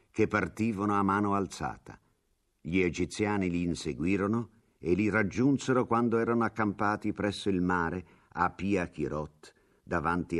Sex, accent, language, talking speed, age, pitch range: male, native, Italian, 125 wpm, 50-69, 70-95 Hz